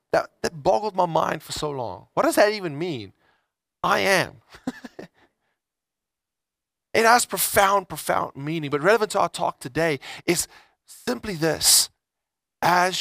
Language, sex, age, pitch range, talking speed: English, male, 30-49, 145-210 Hz, 140 wpm